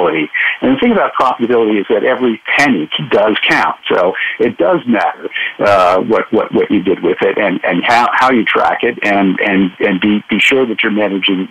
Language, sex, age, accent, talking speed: English, male, 60-79, American, 205 wpm